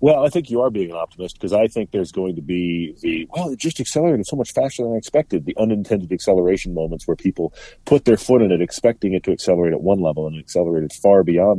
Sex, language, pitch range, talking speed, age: male, English, 85-110 Hz, 255 wpm, 40-59